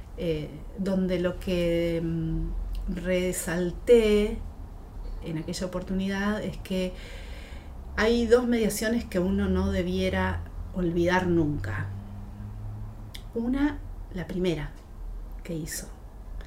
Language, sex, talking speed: Spanish, female, 90 wpm